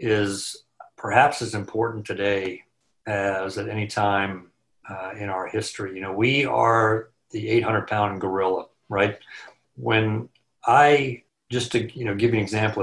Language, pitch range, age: English, 100-120 Hz, 50-69